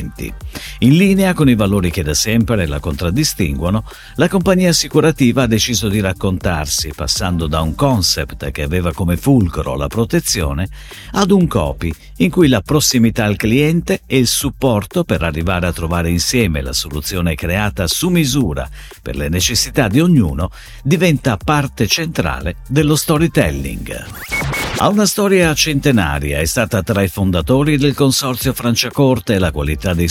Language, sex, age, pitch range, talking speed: Italian, male, 50-69, 85-140 Hz, 150 wpm